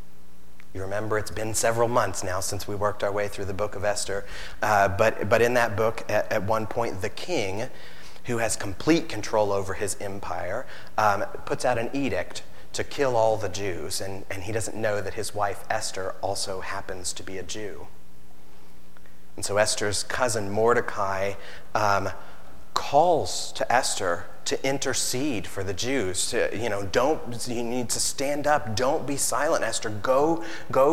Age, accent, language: 30-49, American, English